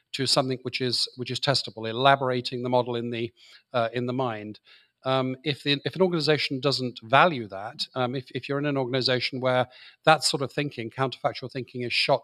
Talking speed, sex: 200 wpm, male